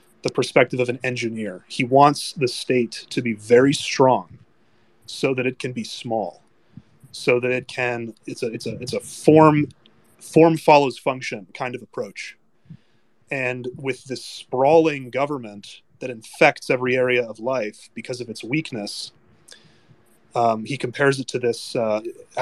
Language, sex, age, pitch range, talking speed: English, male, 30-49, 120-140 Hz, 155 wpm